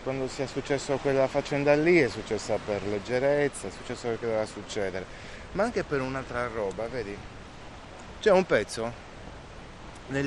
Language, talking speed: Italian, 145 wpm